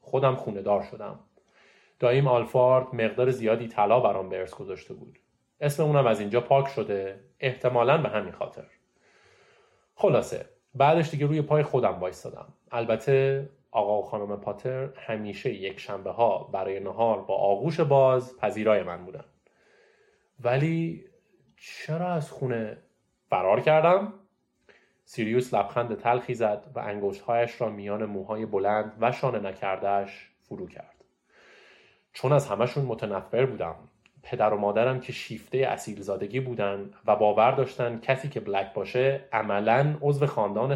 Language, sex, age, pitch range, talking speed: Persian, male, 30-49, 105-135 Hz, 135 wpm